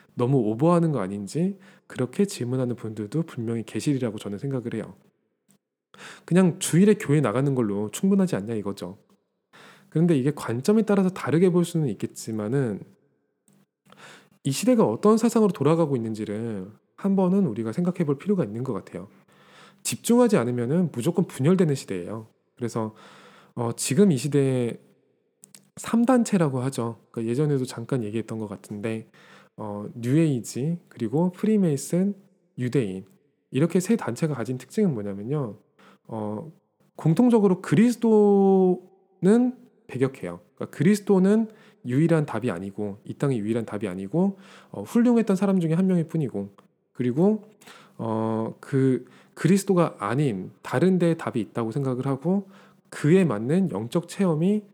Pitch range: 115-195 Hz